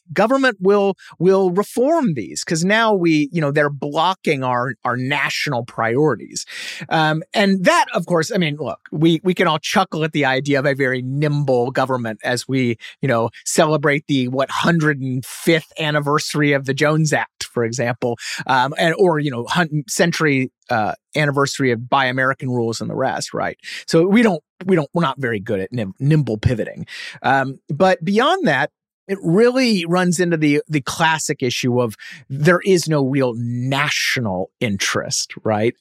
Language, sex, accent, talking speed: English, male, American, 170 wpm